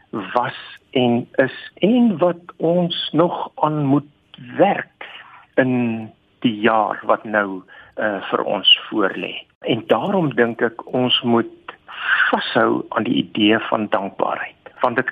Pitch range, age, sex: 120-165 Hz, 60-79, male